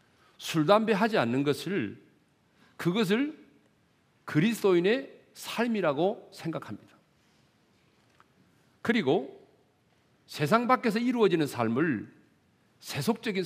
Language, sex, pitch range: Korean, male, 140-225 Hz